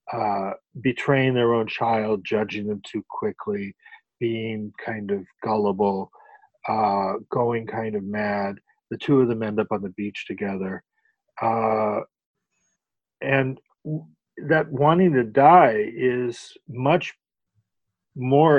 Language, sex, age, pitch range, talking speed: English, male, 40-59, 110-140 Hz, 125 wpm